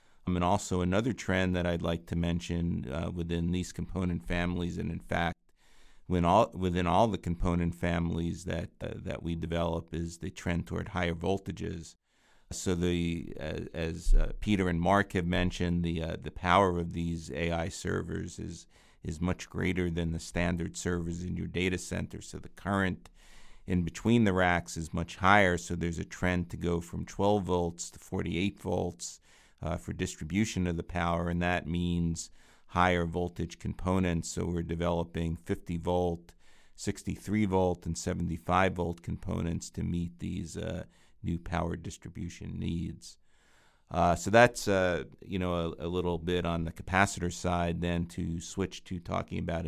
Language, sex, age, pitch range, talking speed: English, male, 50-69, 85-90 Hz, 170 wpm